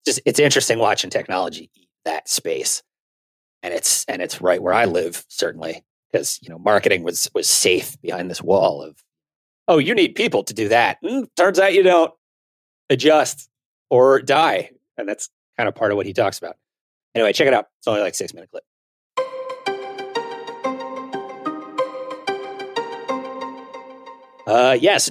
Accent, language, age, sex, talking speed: American, English, 30-49, male, 160 wpm